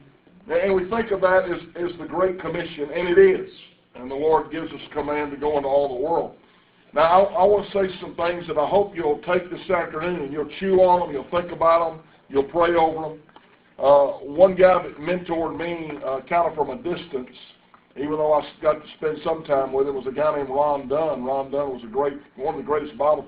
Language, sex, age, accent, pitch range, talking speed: English, male, 50-69, American, 145-185 Hz, 235 wpm